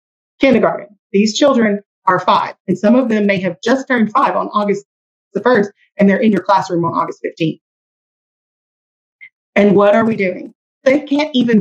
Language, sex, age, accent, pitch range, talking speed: English, female, 30-49, American, 200-260 Hz, 175 wpm